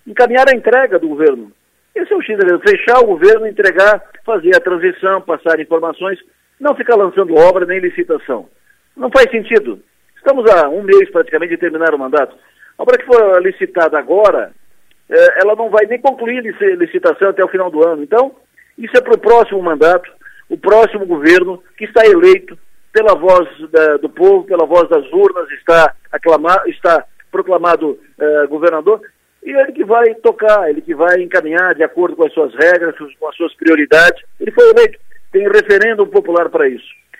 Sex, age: male, 50-69